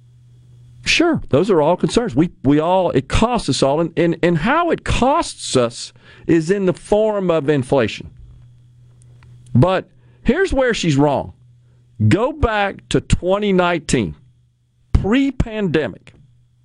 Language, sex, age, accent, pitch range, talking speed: English, male, 50-69, American, 120-180 Hz, 130 wpm